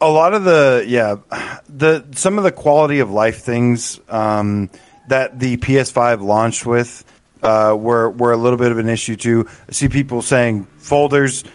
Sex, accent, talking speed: male, American, 175 wpm